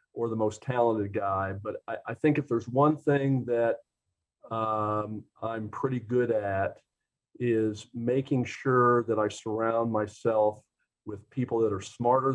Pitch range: 110-135 Hz